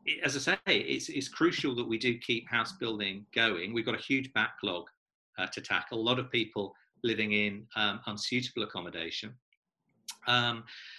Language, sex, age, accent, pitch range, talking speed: English, male, 40-59, British, 105-135 Hz, 170 wpm